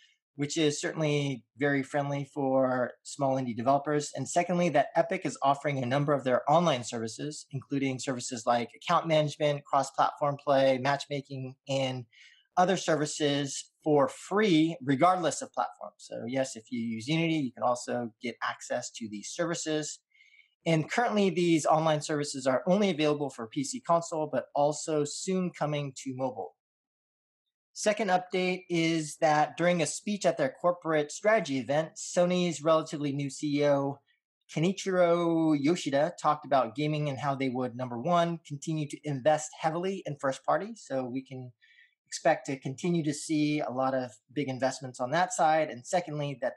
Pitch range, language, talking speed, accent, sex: 135-165 Hz, English, 155 wpm, American, male